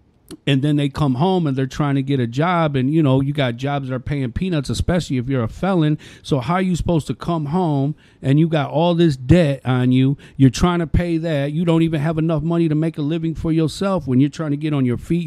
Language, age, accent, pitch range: English, 40-59, American, 130-160 Hz